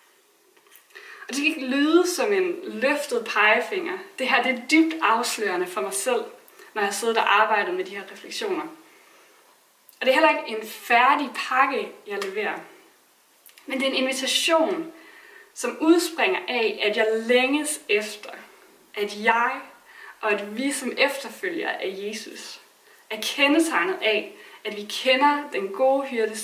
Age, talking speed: 20-39, 150 wpm